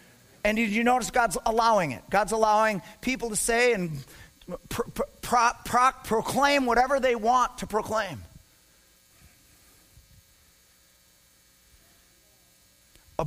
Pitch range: 150-215 Hz